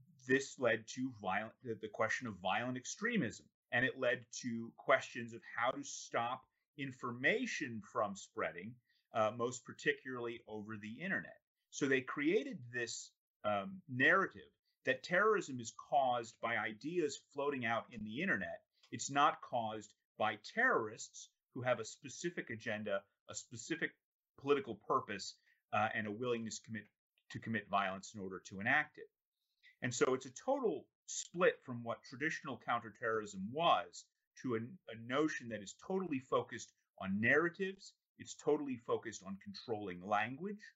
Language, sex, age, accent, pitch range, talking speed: English, male, 30-49, American, 110-150 Hz, 140 wpm